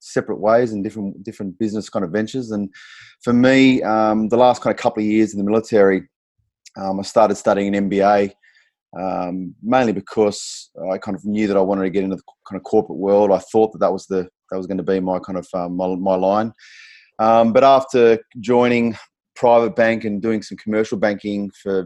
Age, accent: 30-49, Australian